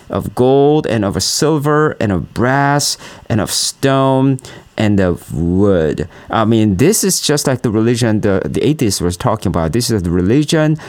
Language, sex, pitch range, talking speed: English, male, 100-135 Hz, 175 wpm